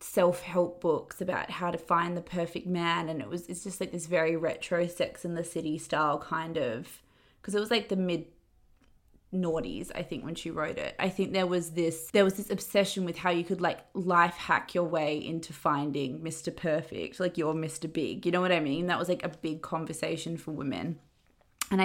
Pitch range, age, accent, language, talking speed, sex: 160-185 Hz, 20-39, Australian, English, 215 wpm, female